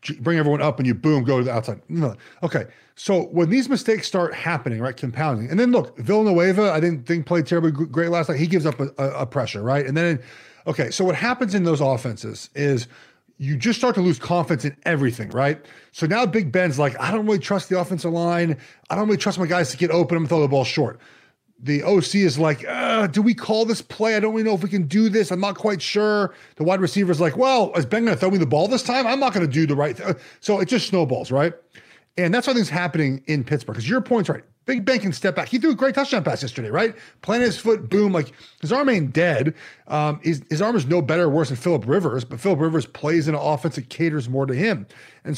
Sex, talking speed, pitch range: male, 255 wpm, 150-200 Hz